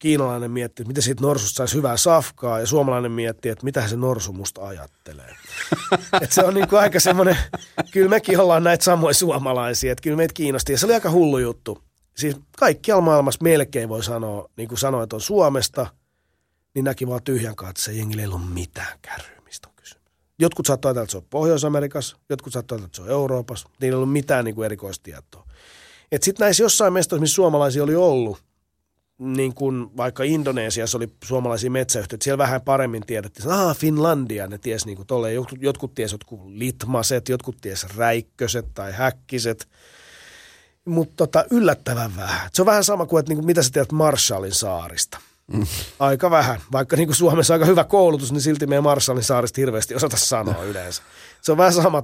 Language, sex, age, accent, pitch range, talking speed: Finnish, male, 30-49, native, 110-155 Hz, 180 wpm